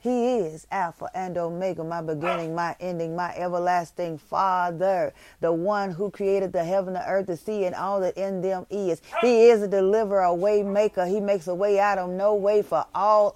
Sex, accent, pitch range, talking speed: female, American, 175-215 Hz, 200 wpm